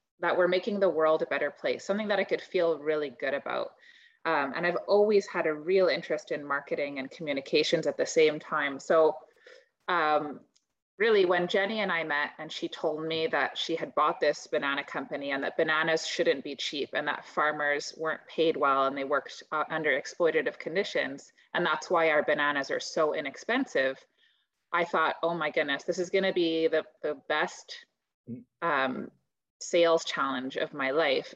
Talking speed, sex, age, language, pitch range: 180 wpm, female, 20-39, English, 155-190 Hz